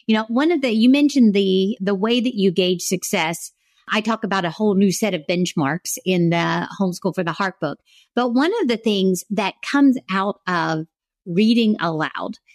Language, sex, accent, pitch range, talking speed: English, female, American, 195-255 Hz, 195 wpm